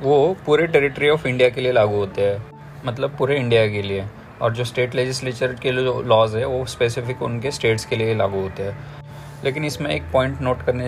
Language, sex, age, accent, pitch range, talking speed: Hindi, male, 20-39, native, 110-135 Hz, 205 wpm